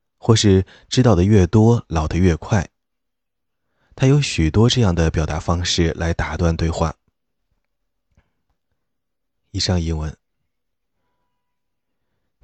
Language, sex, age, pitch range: Chinese, male, 20-39, 80-95 Hz